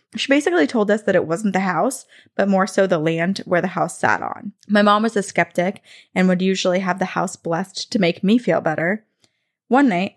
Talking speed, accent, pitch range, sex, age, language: 225 wpm, American, 170-215 Hz, female, 20-39, English